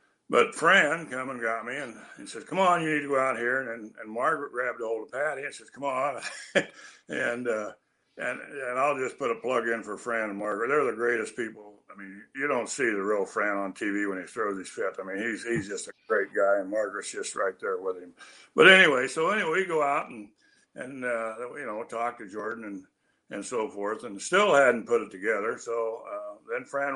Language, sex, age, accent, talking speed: English, male, 60-79, American, 235 wpm